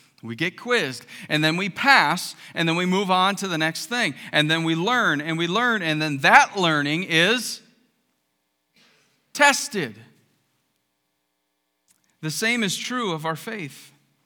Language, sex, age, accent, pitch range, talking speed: English, male, 40-59, American, 140-225 Hz, 150 wpm